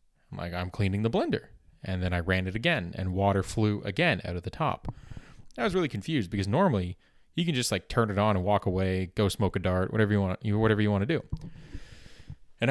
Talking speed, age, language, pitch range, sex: 225 wpm, 30-49, English, 95-115 Hz, male